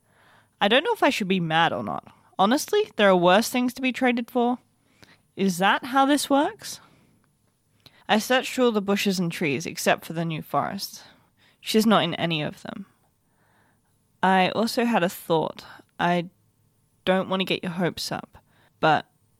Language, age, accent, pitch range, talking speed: English, 20-39, Australian, 175-225 Hz, 175 wpm